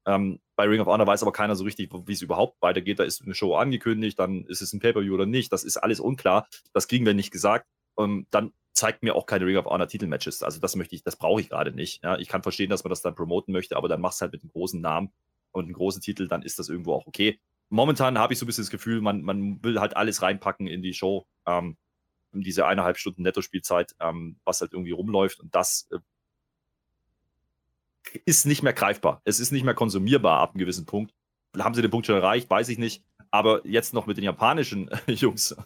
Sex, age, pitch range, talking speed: male, 30-49, 95-110 Hz, 240 wpm